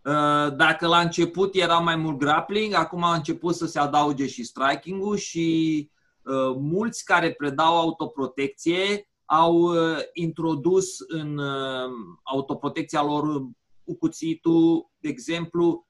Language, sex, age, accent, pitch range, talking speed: Romanian, male, 30-49, native, 140-190 Hz, 120 wpm